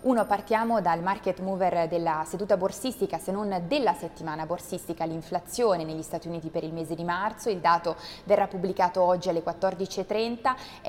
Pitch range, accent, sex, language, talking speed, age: 165-195 Hz, native, female, Italian, 160 wpm, 20-39